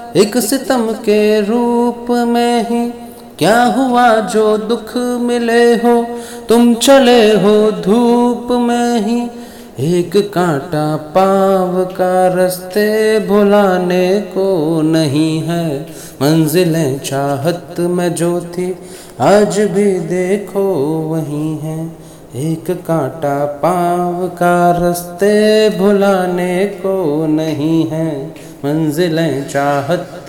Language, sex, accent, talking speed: Hindi, male, native, 95 wpm